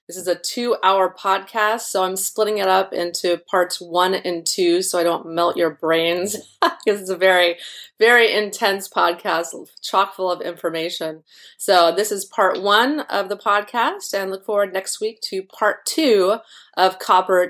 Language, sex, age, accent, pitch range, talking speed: English, female, 30-49, American, 170-215 Hz, 170 wpm